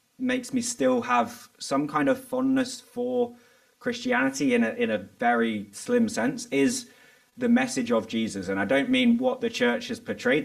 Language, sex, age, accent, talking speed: English, male, 20-39, British, 180 wpm